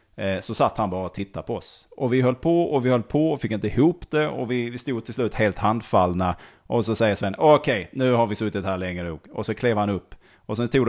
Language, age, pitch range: Swedish, 30-49, 95-120 Hz